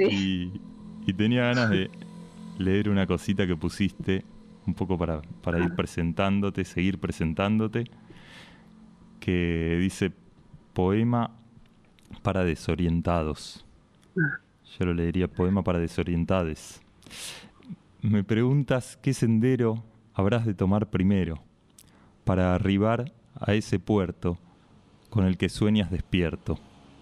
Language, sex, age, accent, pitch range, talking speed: Spanish, male, 30-49, Argentinian, 90-120 Hz, 105 wpm